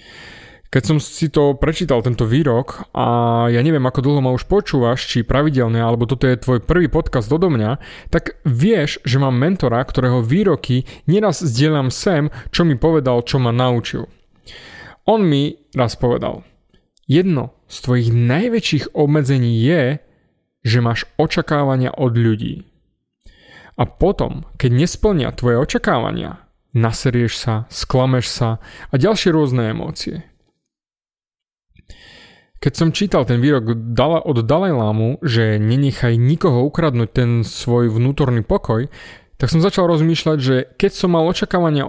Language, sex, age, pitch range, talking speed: Slovak, male, 30-49, 120-160 Hz, 140 wpm